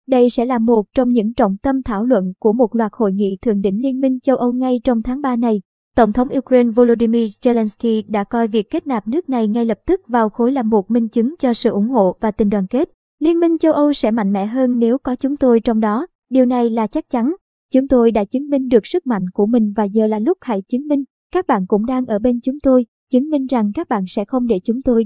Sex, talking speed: male, 260 wpm